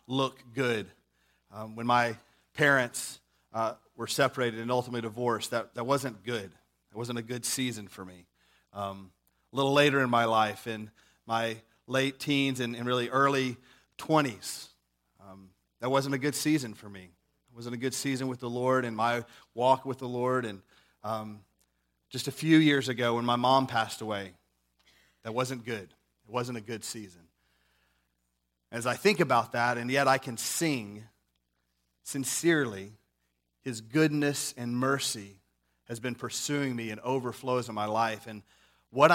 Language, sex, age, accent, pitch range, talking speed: English, male, 30-49, American, 105-130 Hz, 165 wpm